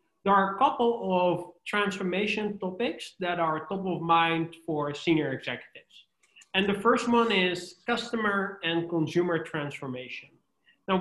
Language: English